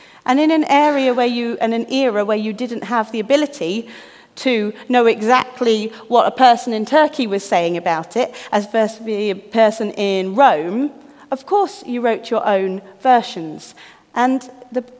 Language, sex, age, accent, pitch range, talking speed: English, female, 40-59, British, 210-265 Hz, 170 wpm